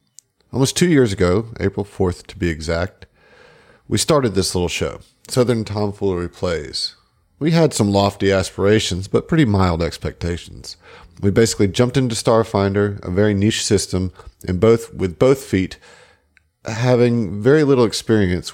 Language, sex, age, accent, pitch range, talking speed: English, male, 40-59, American, 90-115 Hz, 140 wpm